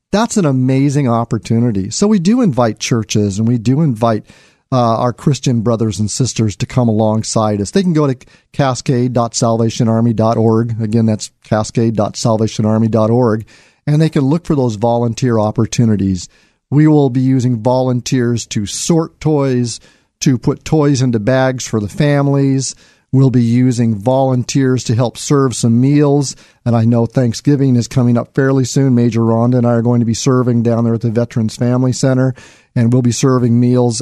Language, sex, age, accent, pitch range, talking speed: English, male, 40-59, American, 115-135 Hz, 165 wpm